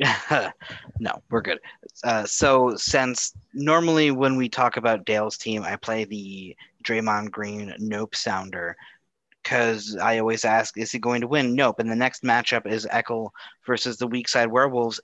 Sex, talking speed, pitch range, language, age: male, 165 wpm, 105-125 Hz, English, 30-49